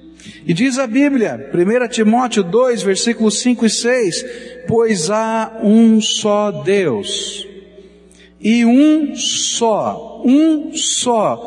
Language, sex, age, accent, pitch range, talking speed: Portuguese, male, 60-79, Brazilian, 185-240 Hz, 110 wpm